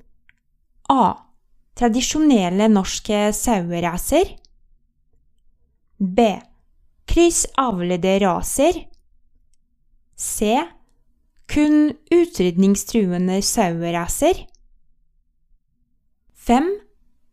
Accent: Norwegian